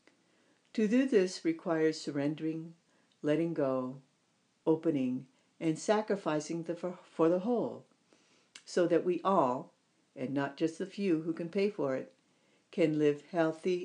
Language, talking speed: English, 135 wpm